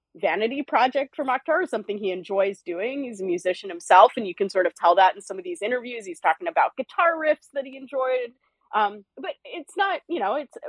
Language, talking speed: English, 225 wpm